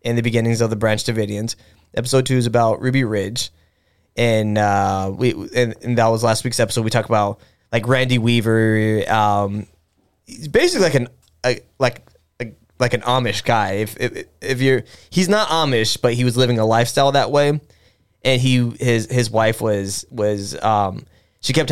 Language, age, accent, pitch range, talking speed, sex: English, 20-39, American, 105-130 Hz, 180 wpm, male